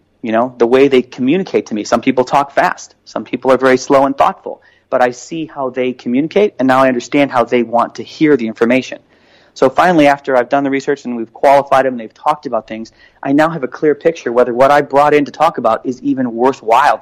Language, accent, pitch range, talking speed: English, American, 120-145 Hz, 245 wpm